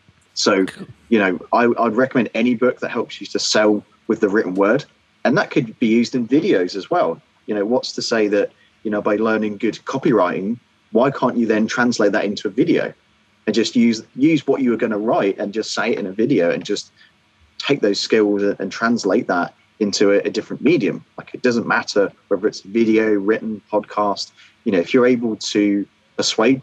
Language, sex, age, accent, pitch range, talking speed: English, male, 30-49, British, 95-110 Hz, 210 wpm